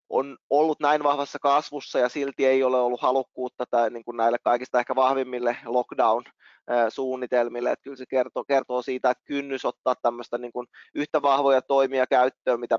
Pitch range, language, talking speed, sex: 125-140 Hz, Finnish, 170 wpm, male